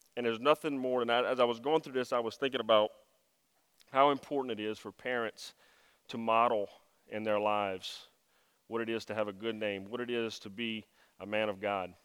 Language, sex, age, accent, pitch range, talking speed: English, male, 30-49, American, 110-130 Hz, 215 wpm